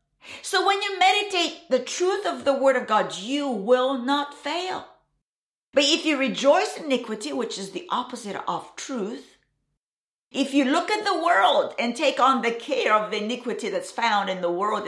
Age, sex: 50-69, female